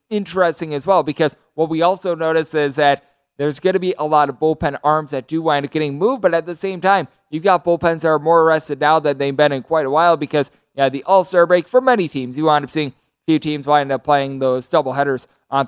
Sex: male